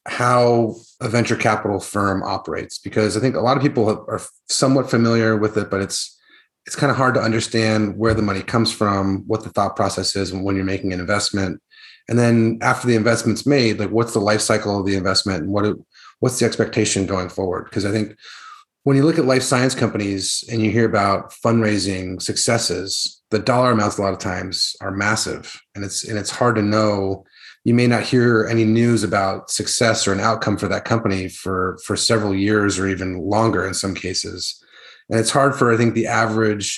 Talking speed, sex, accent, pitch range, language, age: 205 wpm, male, American, 100-115 Hz, English, 30-49